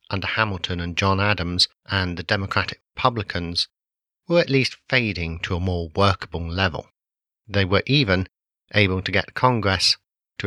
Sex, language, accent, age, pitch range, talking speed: male, English, British, 40-59, 90-105 Hz, 145 wpm